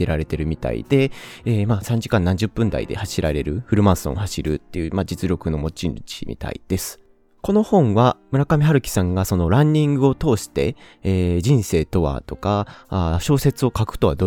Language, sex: Japanese, male